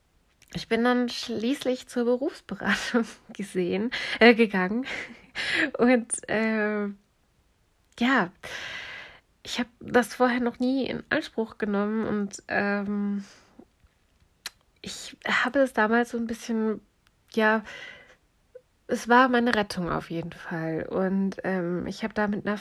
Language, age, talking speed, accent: German, 20-39, 120 wpm, German